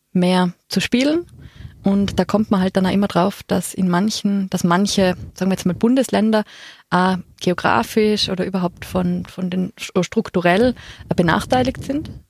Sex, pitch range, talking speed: female, 180-205 Hz, 155 wpm